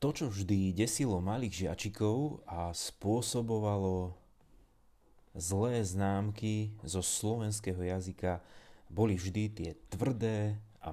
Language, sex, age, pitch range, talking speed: Slovak, male, 30-49, 95-115 Hz, 100 wpm